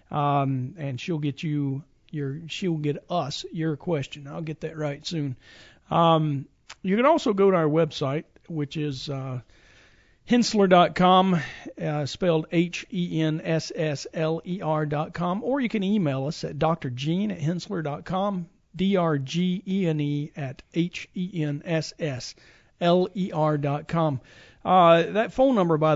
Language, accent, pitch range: English, American, 145-170 Hz